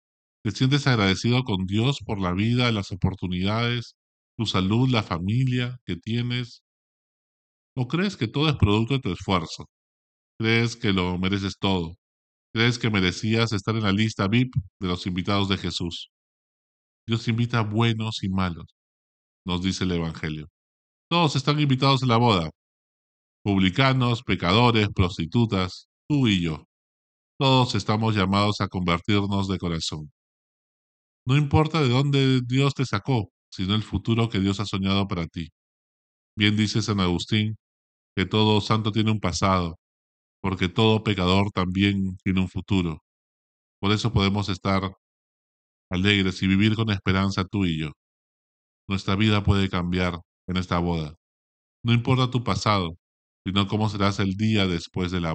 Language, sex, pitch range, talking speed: Spanish, male, 90-115 Hz, 145 wpm